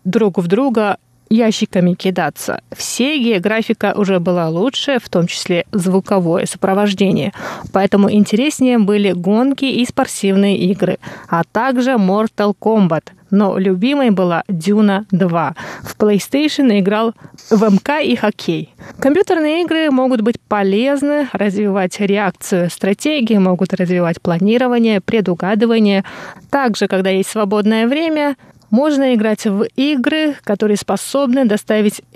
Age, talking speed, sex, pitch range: 20-39, 120 wpm, female, 190-235 Hz